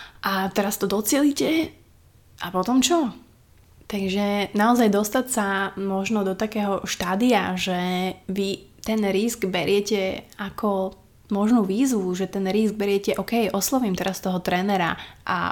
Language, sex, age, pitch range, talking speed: Slovak, female, 20-39, 185-215 Hz, 130 wpm